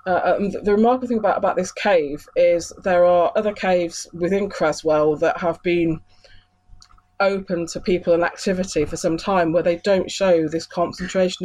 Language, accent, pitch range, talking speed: English, British, 165-195 Hz, 170 wpm